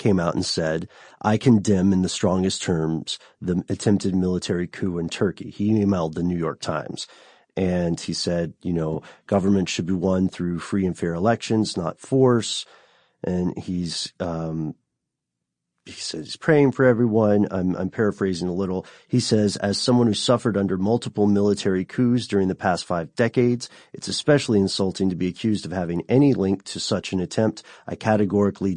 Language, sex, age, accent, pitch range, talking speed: English, male, 40-59, American, 90-110 Hz, 170 wpm